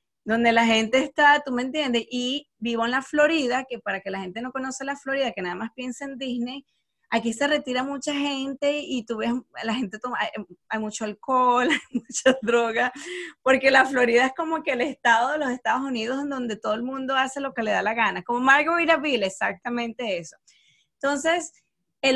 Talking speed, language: 205 wpm, Spanish